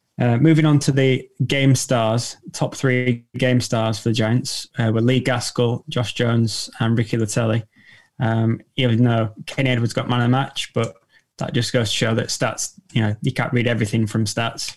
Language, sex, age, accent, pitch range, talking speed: English, male, 10-29, British, 115-125 Hz, 200 wpm